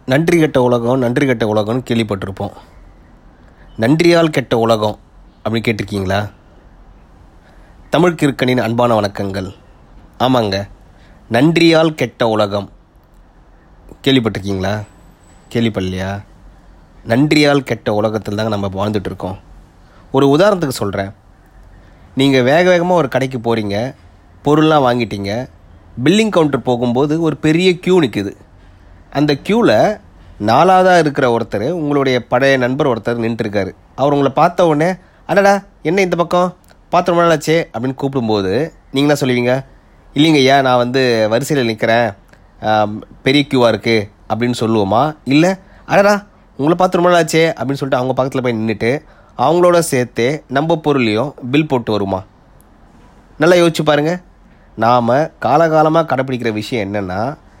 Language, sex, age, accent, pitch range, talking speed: Tamil, male, 30-49, native, 105-150 Hz, 110 wpm